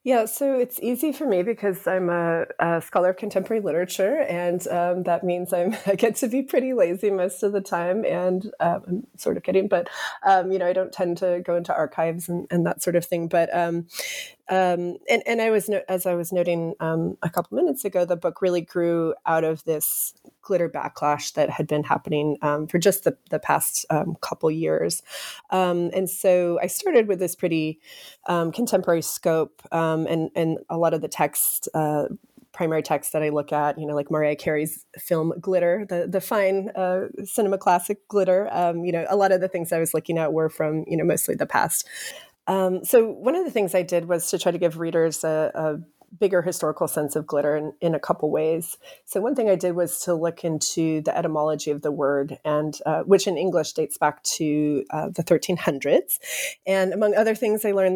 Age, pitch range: 30-49, 160-190 Hz